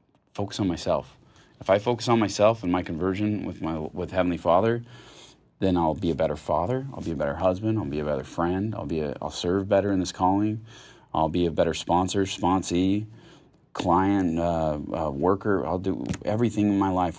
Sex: male